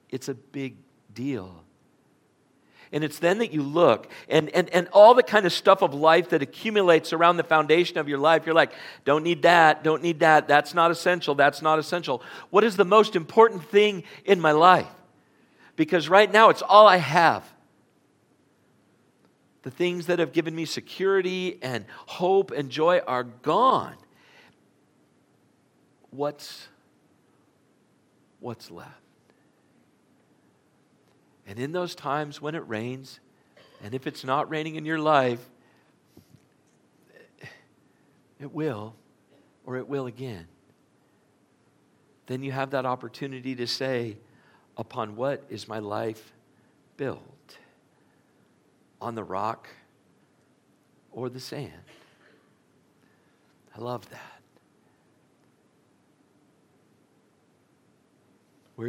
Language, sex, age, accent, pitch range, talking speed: English, male, 50-69, American, 125-170 Hz, 120 wpm